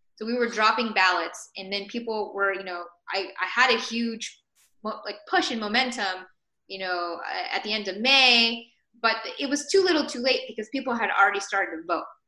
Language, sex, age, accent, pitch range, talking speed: English, female, 10-29, American, 185-245 Hz, 200 wpm